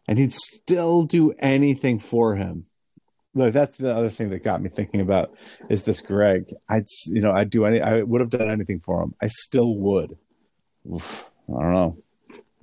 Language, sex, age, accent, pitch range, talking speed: English, male, 40-59, American, 105-135 Hz, 195 wpm